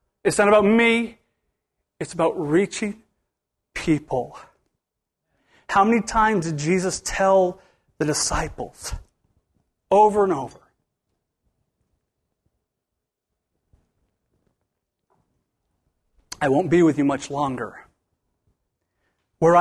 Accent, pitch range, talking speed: American, 170-250 Hz, 85 wpm